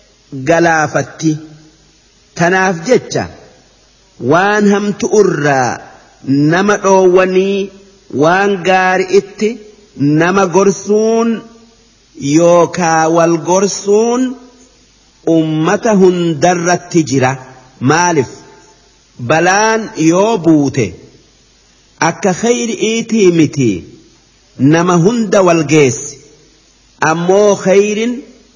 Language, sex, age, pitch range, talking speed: Arabic, male, 50-69, 155-200 Hz, 60 wpm